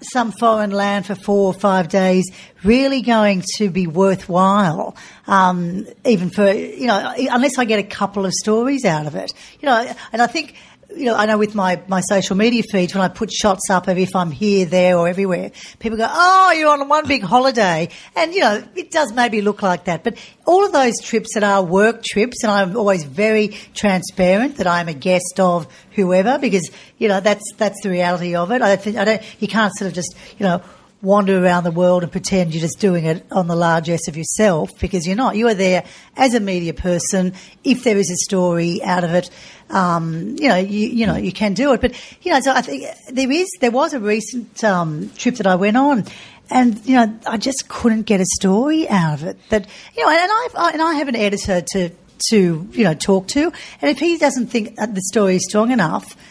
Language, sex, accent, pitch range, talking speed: English, female, Australian, 185-235 Hz, 230 wpm